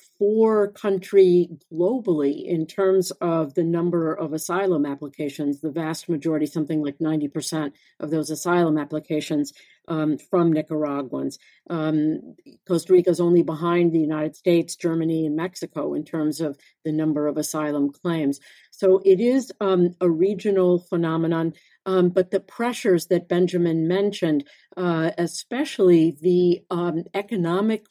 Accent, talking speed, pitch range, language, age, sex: American, 135 wpm, 160-190 Hz, English, 50-69, female